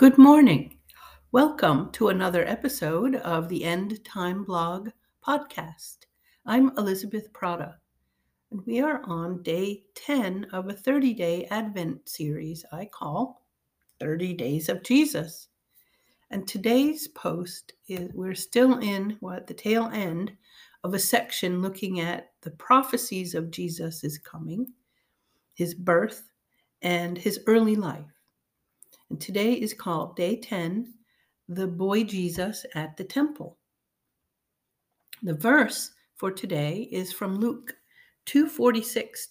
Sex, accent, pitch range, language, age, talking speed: female, American, 175-245 Hz, English, 60-79, 120 wpm